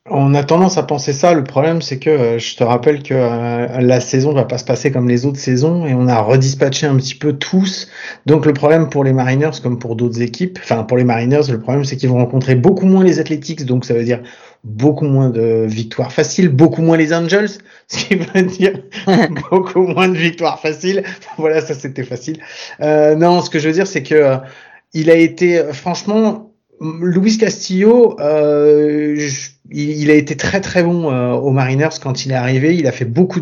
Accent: French